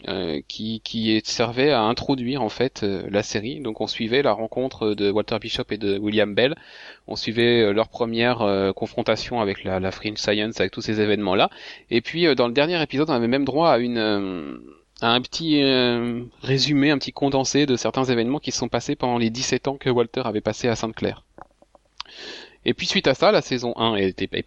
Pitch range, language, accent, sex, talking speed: 105-130 Hz, French, French, male, 210 wpm